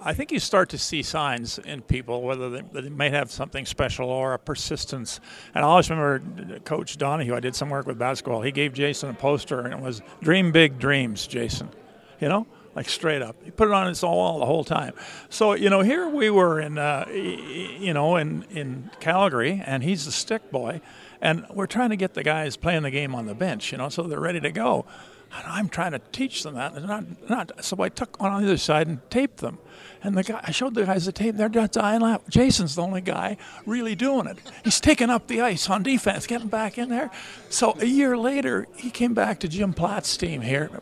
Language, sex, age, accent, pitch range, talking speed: English, male, 50-69, American, 145-210 Hz, 230 wpm